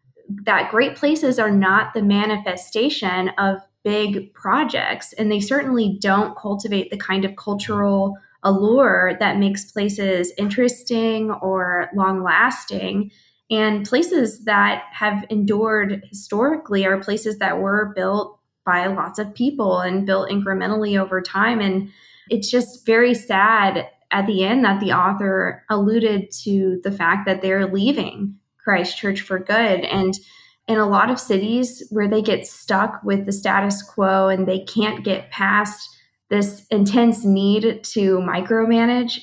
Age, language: 20-39, English